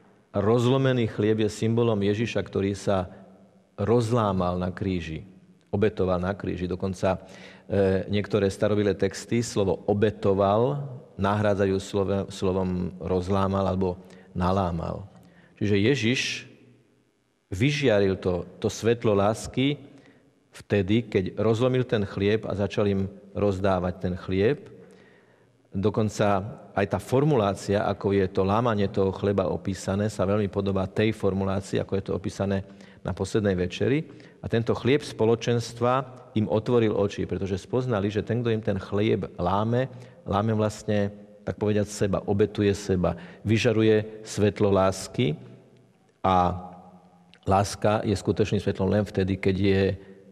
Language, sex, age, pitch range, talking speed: Slovak, male, 40-59, 95-110 Hz, 120 wpm